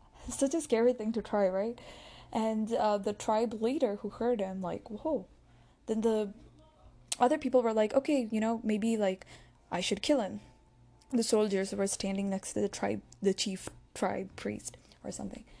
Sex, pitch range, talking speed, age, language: female, 195-235 Hz, 175 wpm, 10-29, English